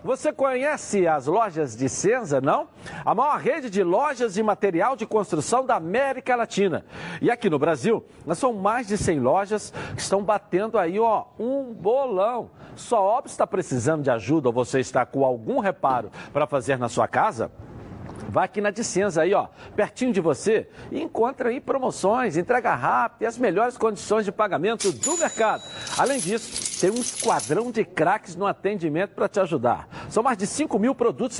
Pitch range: 160-240 Hz